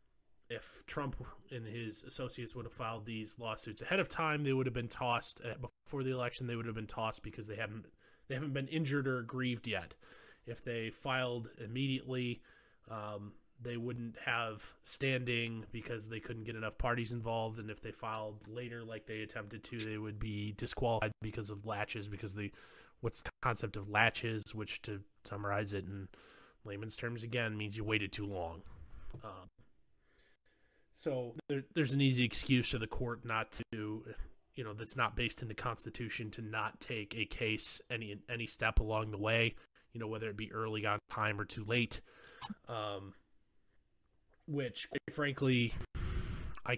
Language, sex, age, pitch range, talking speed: English, male, 20-39, 105-120 Hz, 175 wpm